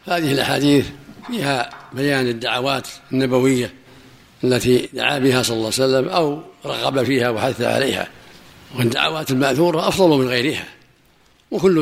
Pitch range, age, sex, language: 125-145 Hz, 60-79, male, Arabic